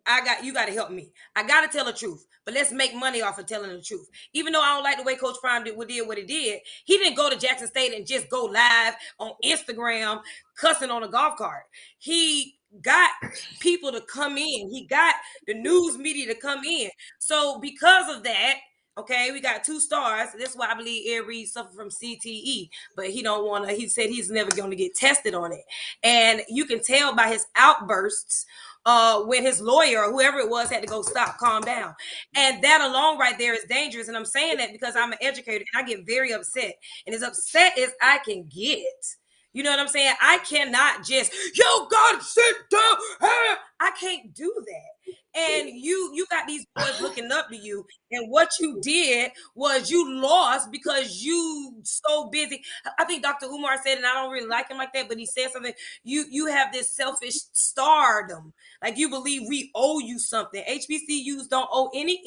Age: 20-39